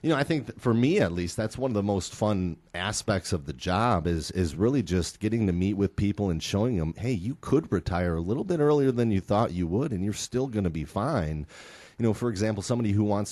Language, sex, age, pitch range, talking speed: English, male, 30-49, 90-125 Hz, 255 wpm